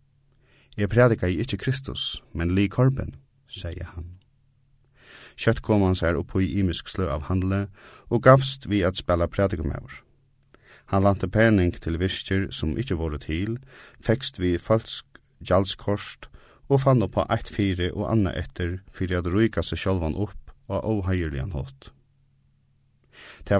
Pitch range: 90-120 Hz